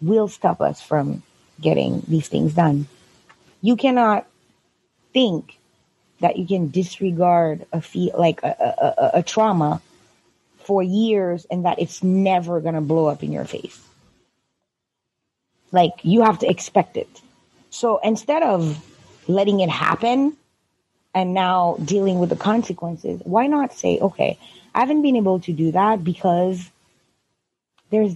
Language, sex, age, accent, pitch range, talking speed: English, female, 20-39, American, 170-215 Hz, 140 wpm